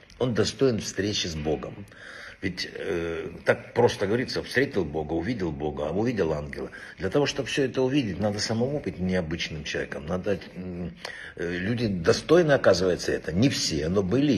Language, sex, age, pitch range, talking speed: Russian, male, 60-79, 90-115 Hz, 155 wpm